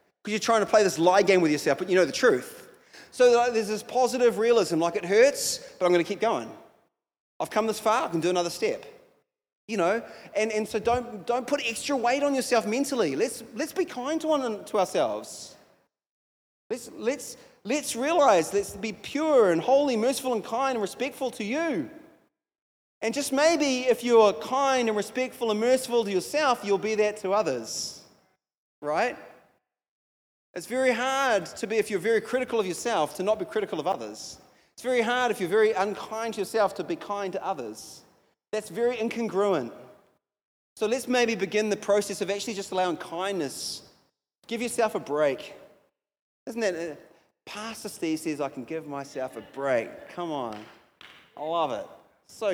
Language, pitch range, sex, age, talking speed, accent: English, 190-255 Hz, male, 30-49, 185 wpm, Australian